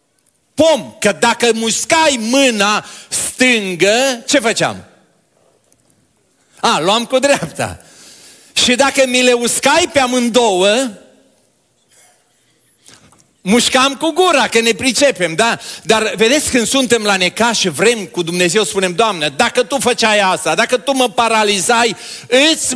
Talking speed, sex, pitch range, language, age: 125 wpm, male, 150-235 Hz, Romanian, 40-59